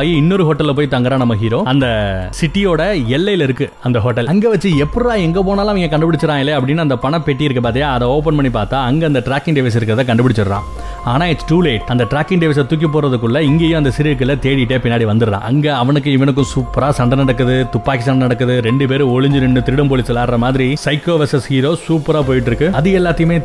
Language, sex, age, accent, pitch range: Tamil, male, 30-49, native, 125-155 Hz